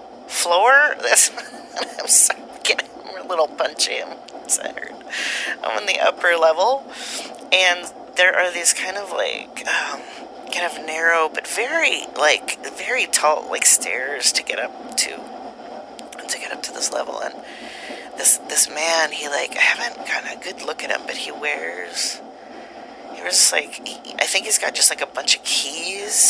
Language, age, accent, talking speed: English, 30-49, American, 170 wpm